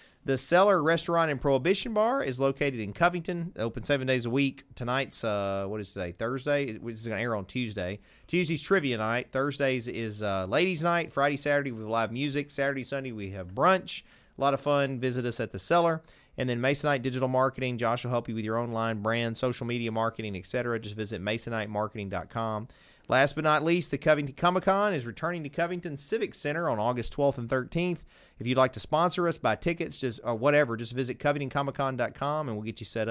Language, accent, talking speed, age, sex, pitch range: English, American, 205 wpm, 30-49, male, 115-150 Hz